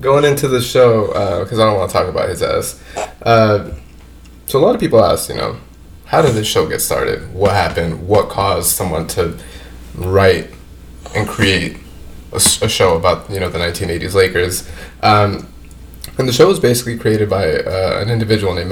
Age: 20-39